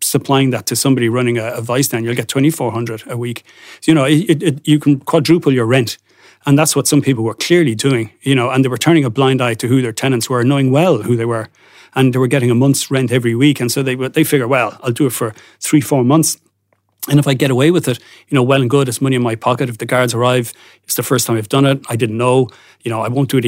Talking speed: 280 wpm